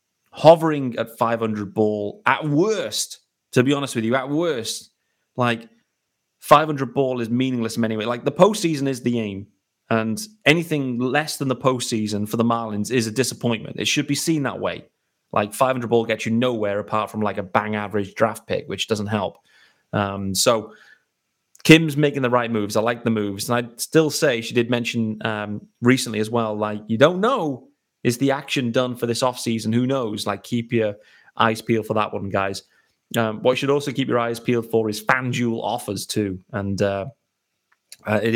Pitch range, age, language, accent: 110-130 Hz, 30-49, English, British